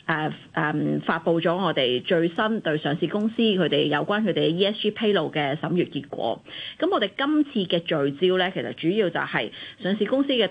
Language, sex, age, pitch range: Chinese, female, 30-49, 155-205 Hz